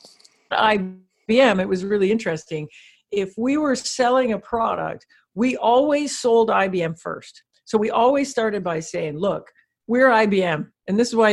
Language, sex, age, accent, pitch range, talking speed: Romanian, female, 50-69, American, 180-250 Hz, 155 wpm